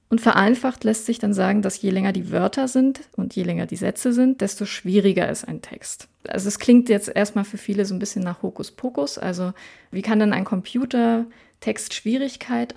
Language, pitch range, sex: German, 195-235 Hz, female